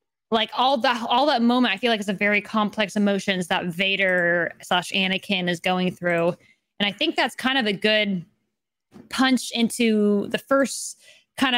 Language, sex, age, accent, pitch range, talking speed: English, female, 20-39, American, 190-225 Hz, 175 wpm